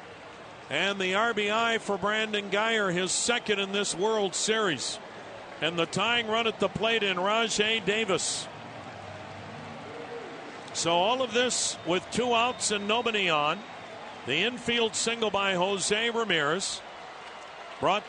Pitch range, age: 180-215 Hz, 50-69